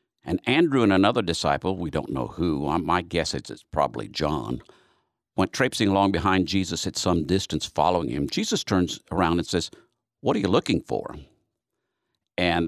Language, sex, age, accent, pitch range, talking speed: English, male, 50-69, American, 75-100 Hz, 160 wpm